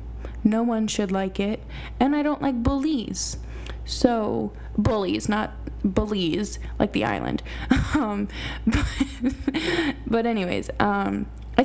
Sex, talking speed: female, 120 wpm